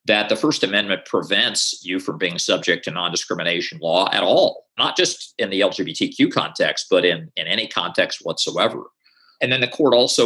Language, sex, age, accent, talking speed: English, male, 50-69, American, 180 wpm